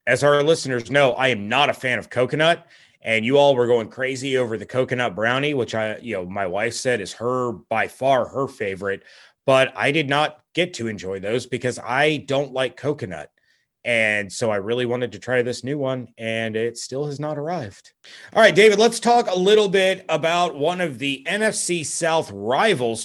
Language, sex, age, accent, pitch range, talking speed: English, male, 30-49, American, 120-160 Hz, 205 wpm